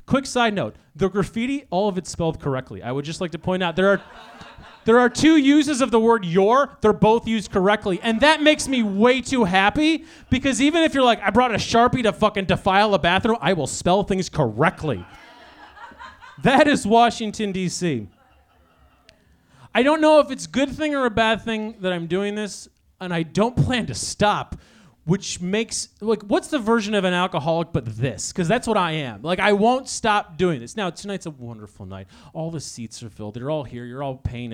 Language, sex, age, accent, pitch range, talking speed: English, male, 30-49, American, 160-230 Hz, 210 wpm